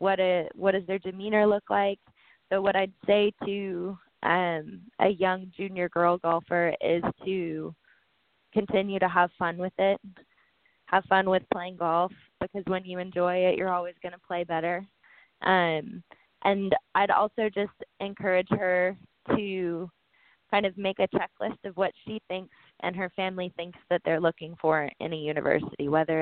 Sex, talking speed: female, 165 wpm